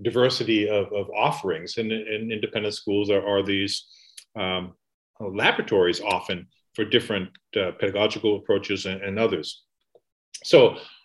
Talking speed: 125 wpm